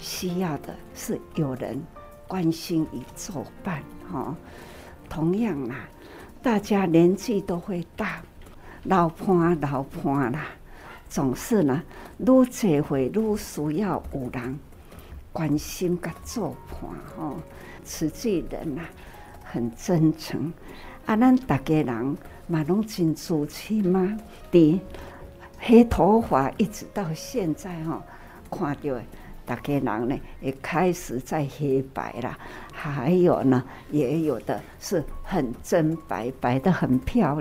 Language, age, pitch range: Chinese, 60-79, 135-185 Hz